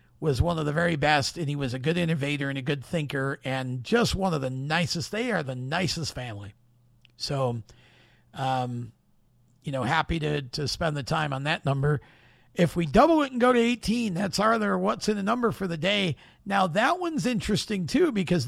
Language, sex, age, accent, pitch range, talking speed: English, male, 50-69, American, 135-205 Hz, 205 wpm